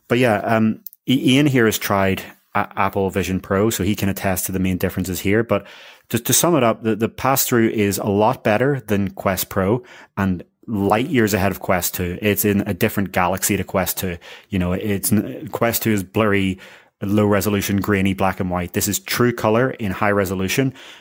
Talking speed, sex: 200 wpm, male